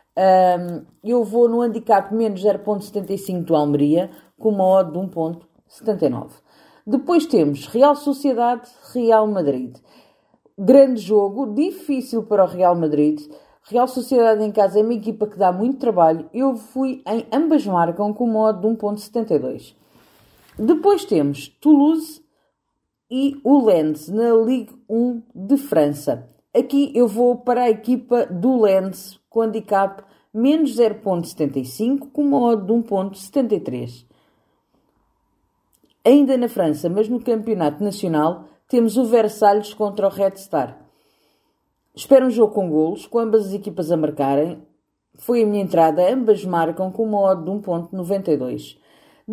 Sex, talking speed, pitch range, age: female, 135 wpm, 185-245 Hz, 40-59